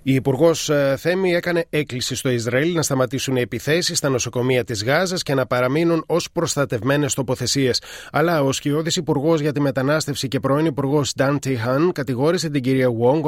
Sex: male